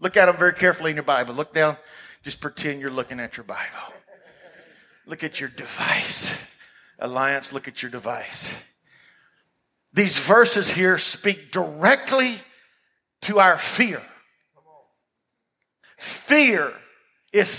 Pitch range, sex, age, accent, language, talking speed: 155-205 Hz, male, 50-69, American, English, 125 wpm